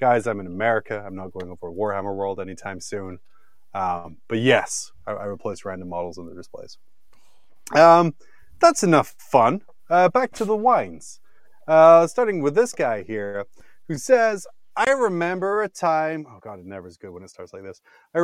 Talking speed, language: 185 wpm, English